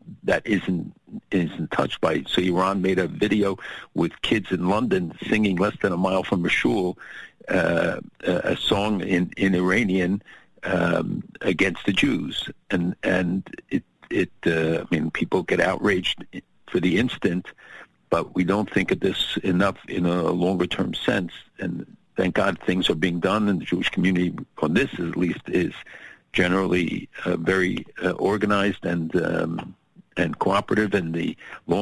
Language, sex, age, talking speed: English, male, 50-69, 160 wpm